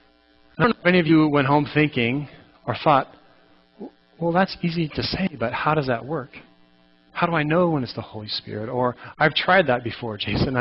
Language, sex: English, male